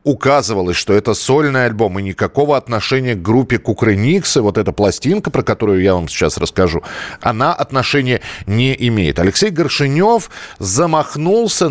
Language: Russian